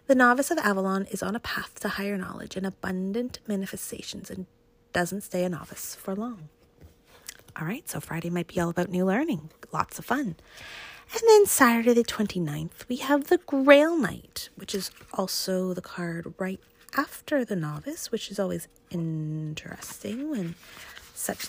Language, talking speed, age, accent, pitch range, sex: English, 160 wpm, 30-49, American, 180-250 Hz, female